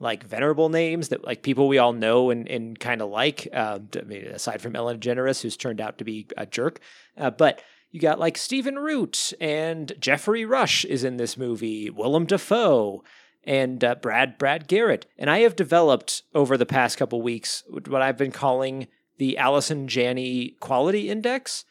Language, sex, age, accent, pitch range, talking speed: English, male, 30-49, American, 130-200 Hz, 175 wpm